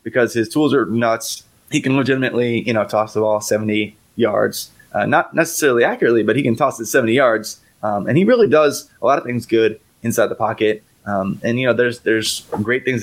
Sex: male